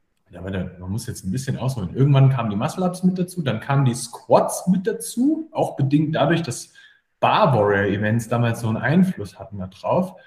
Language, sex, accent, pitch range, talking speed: German, male, German, 105-150 Hz, 175 wpm